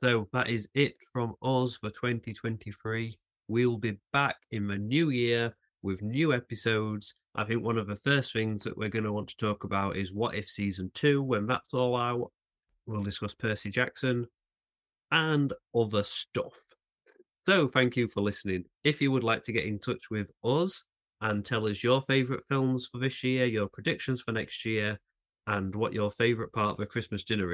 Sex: male